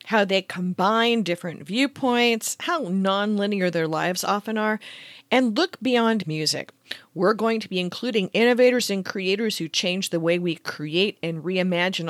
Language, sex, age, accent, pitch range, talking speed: English, female, 40-59, American, 175-245 Hz, 155 wpm